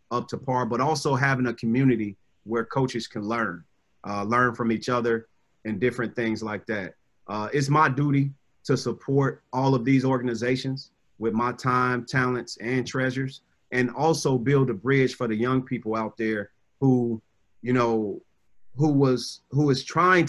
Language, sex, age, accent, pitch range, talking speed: English, male, 30-49, American, 115-140 Hz, 170 wpm